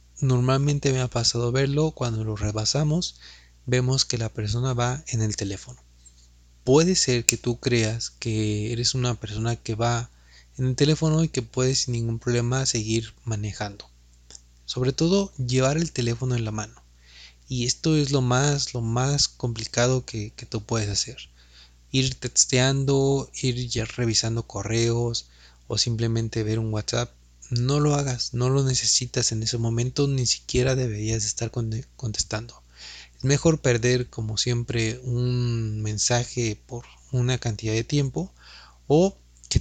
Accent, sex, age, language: Mexican, male, 30-49, Spanish